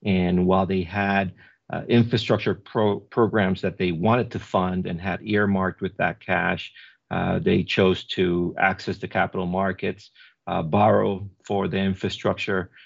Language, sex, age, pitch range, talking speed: English, male, 40-59, 90-105 Hz, 145 wpm